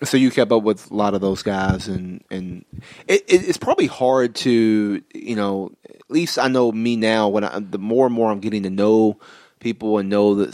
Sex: male